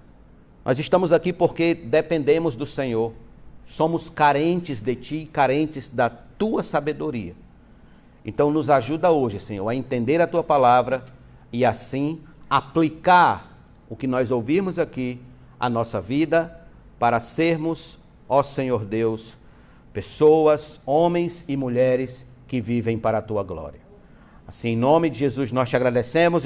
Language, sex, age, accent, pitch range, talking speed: Portuguese, male, 60-79, Brazilian, 125-165 Hz, 135 wpm